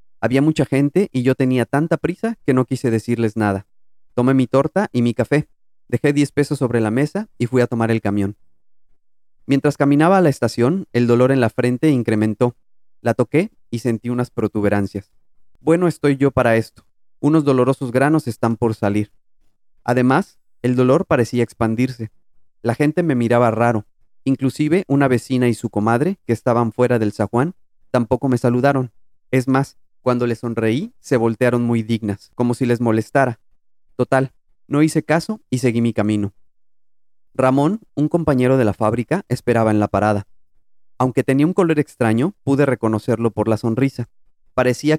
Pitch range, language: 110-140 Hz, Spanish